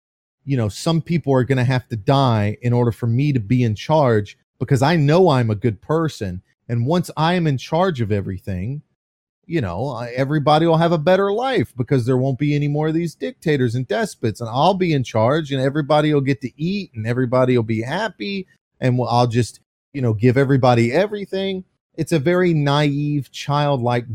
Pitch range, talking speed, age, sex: 115-150 Hz, 200 wpm, 30-49, male